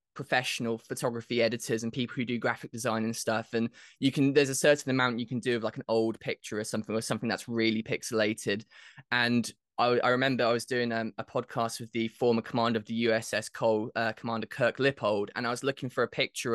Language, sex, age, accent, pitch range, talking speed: English, male, 20-39, British, 115-145 Hz, 225 wpm